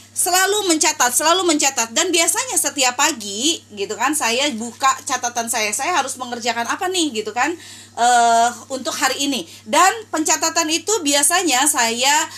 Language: Indonesian